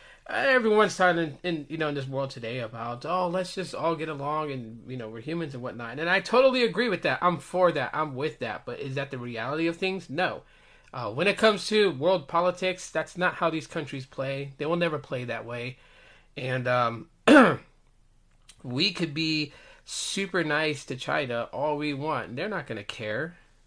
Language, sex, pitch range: English, male, 120-175 Hz